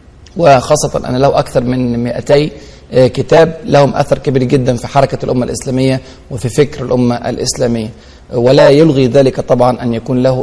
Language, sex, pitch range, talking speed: Arabic, male, 120-155 Hz, 150 wpm